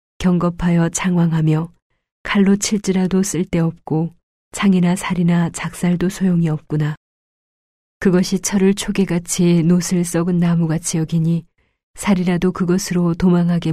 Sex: female